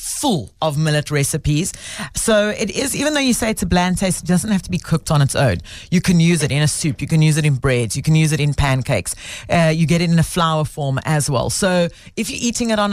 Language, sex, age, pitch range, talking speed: English, female, 30-49, 140-180 Hz, 275 wpm